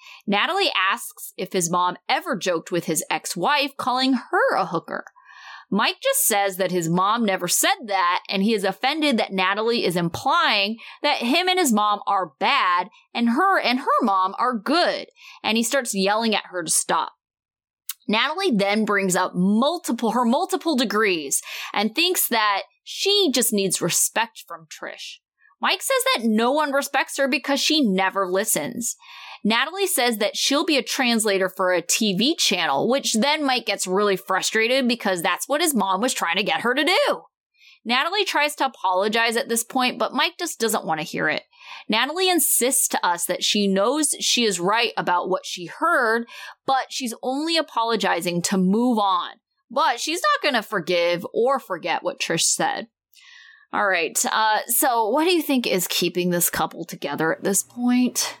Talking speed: 180 wpm